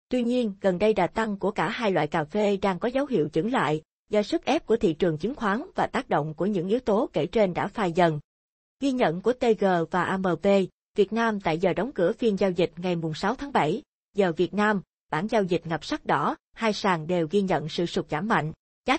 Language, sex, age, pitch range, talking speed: Vietnamese, female, 20-39, 180-225 Hz, 245 wpm